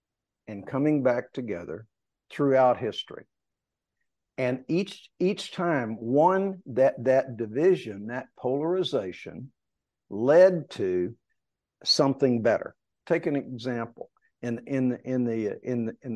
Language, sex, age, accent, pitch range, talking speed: English, male, 50-69, American, 115-145 Hz, 95 wpm